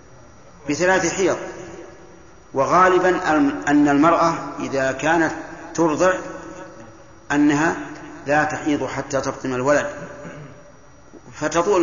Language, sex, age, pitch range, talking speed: Arabic, male, 50-69, 135-170 Hz, 75 wpm